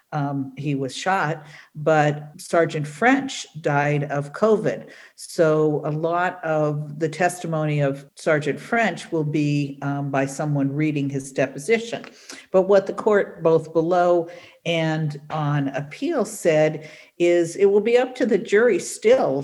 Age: 50-69